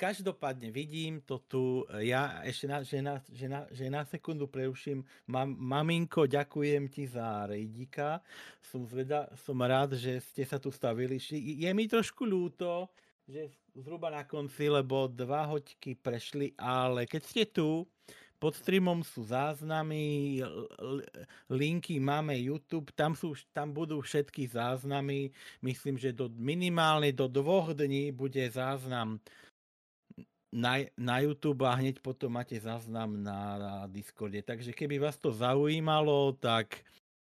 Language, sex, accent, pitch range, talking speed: Czech, male, native, 120-150 Hz, 135 wpm